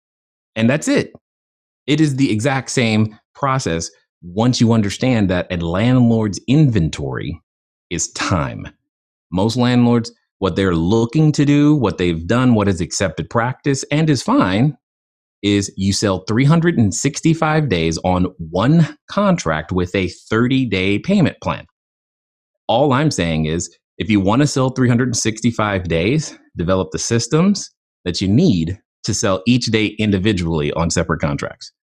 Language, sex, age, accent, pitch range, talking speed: English, male, 30-49, American, 85-120 Hz, 135 wpm